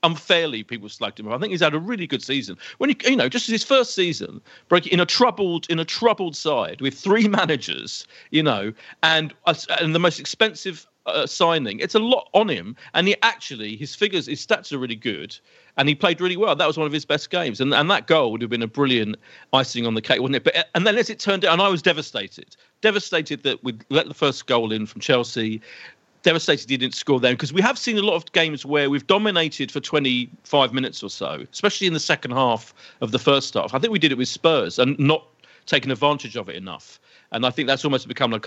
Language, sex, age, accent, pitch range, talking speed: English, male, 40-59, British, 130-185 Hz, 240 wpm